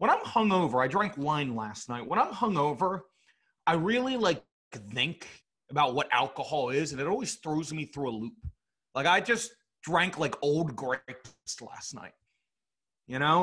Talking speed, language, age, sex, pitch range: 170 wpm, English, 30-49, male, 140-190 Hz